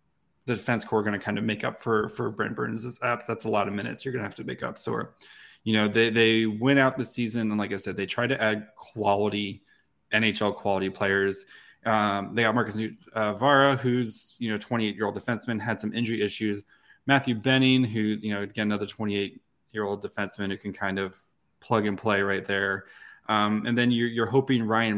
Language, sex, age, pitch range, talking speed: English, male, 20-39, 100-115 Hz, 220 wpm